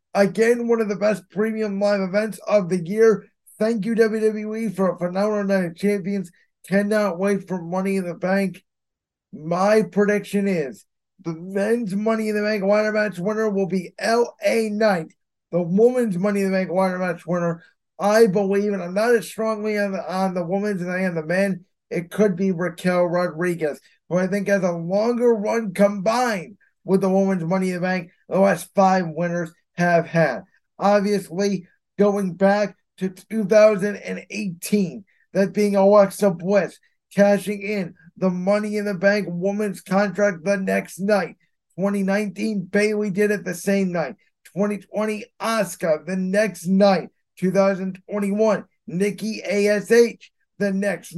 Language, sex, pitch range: English, male, 185-215 Hz